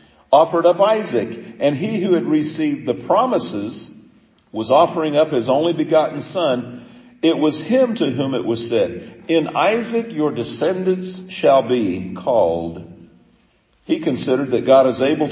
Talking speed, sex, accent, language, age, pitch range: 150 wpm, male, American, English, 50-69, 115-175 Hz